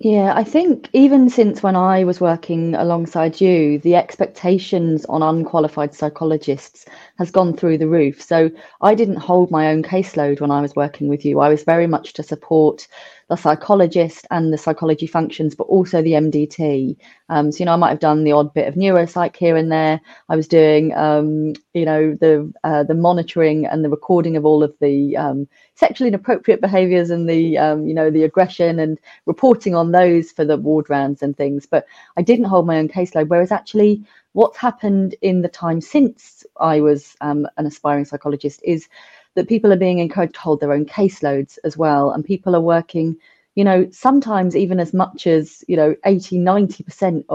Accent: British